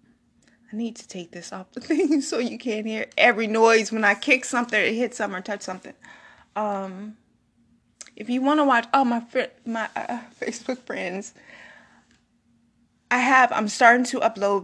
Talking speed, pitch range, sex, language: 180 wpm, 195-250 Hz, female, English